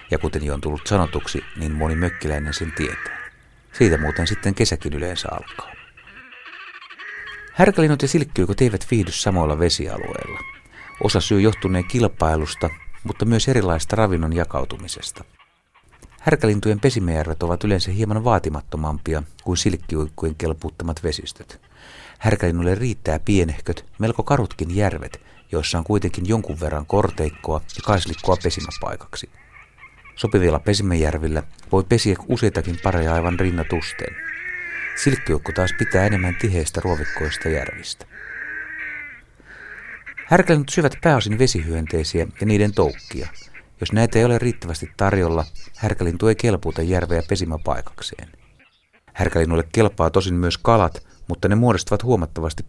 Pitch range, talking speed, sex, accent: 80-105 Hz, 115 wpm, male, native